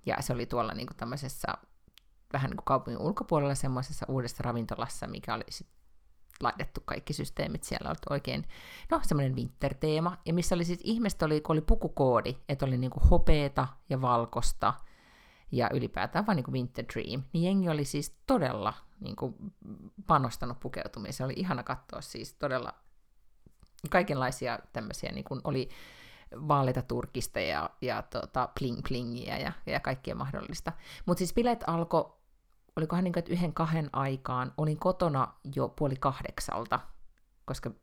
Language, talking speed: Finnish, 140 wpm